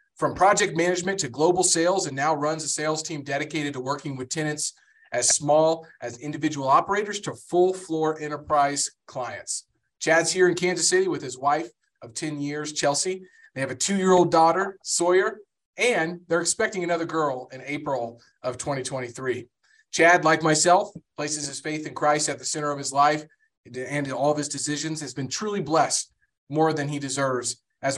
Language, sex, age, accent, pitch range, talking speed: English, male, 30-49, American, 140-170 Hz, 180 wpm